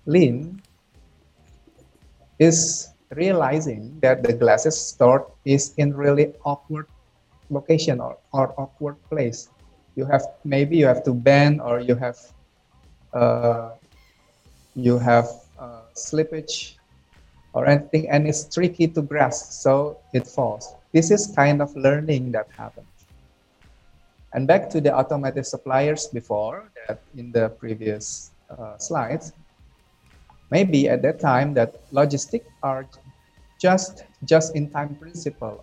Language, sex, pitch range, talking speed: English, male, 120-150 Hz, 125 wpm